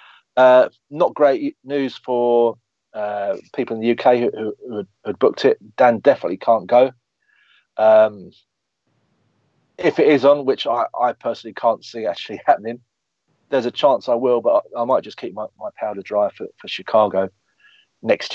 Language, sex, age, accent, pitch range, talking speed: English, male, 40-59, British, 110-130 Hz, 170 wpm